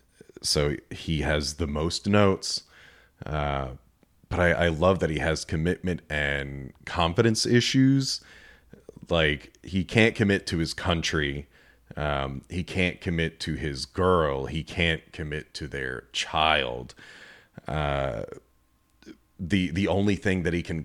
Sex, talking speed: male, 130 wpm